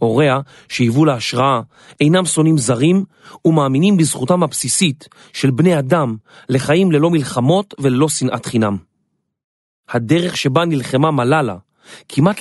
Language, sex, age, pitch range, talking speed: Hebrew, male, 40-59, 125-165 Hz, 110 wpm